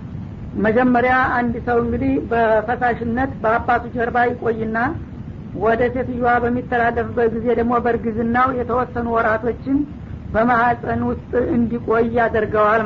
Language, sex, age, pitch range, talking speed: Amharic, female, 50-69, 225-240 Hz, 90 wpm